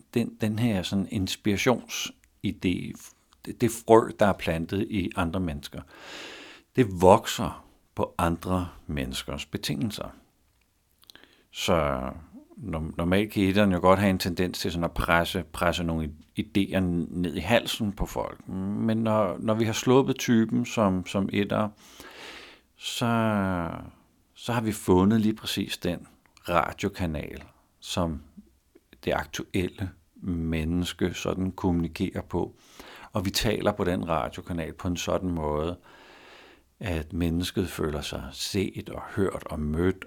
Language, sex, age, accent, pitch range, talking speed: Danish, male, 60-79, native, 80-100 Hz, 130 wpm